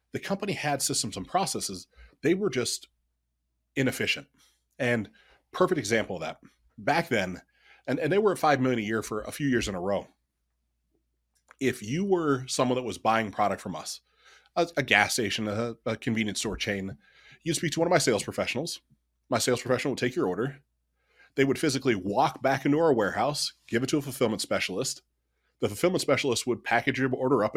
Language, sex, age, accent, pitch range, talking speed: English, male, 30-49, American, 100-135 Hz, 195 wpm